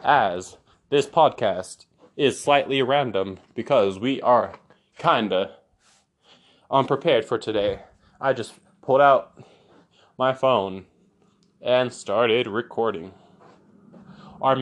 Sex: male